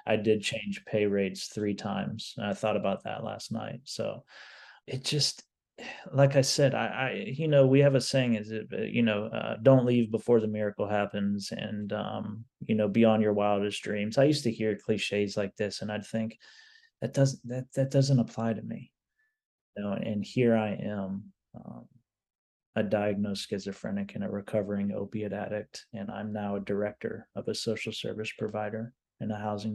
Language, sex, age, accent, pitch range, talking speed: English, male, 30-49, American, 105-120 Hz, 190 wpm